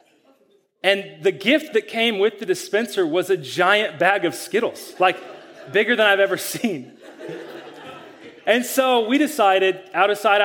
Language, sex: English, male